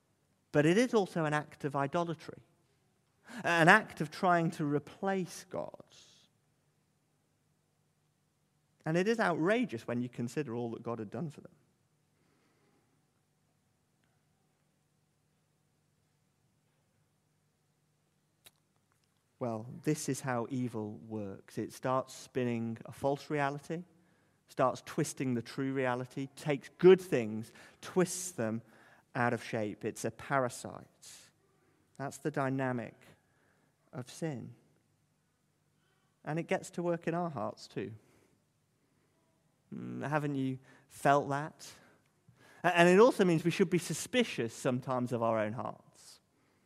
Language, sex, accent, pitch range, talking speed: English, male, British, 130-170 Hz, 115 wpm